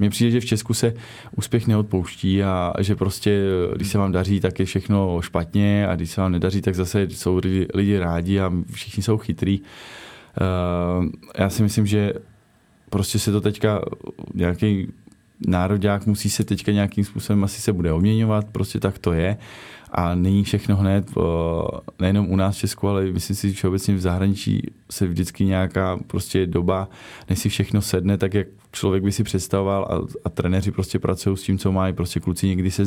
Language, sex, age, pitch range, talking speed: Czech, male, 20-39, 90-100 Hz, 185 wpm